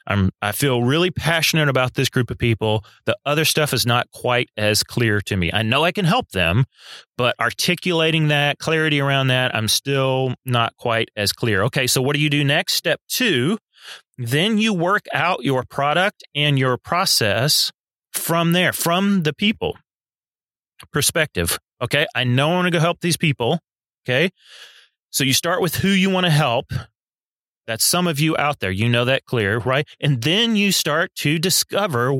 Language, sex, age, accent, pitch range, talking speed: English, male, 30-49, American, 120-155 Hz, 180 wpm